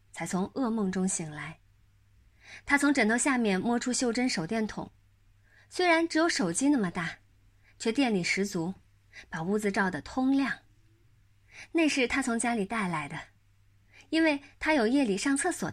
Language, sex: Chinese, female